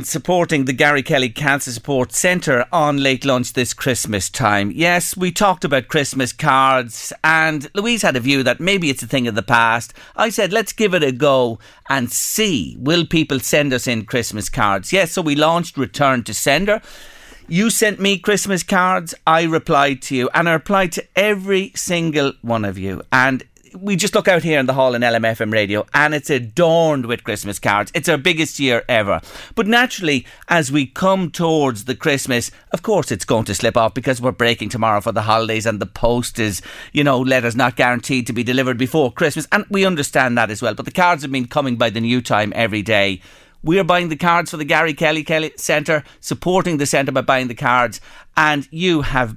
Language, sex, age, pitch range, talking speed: English, male, 40-59, 120-170 Hz, 210 wpm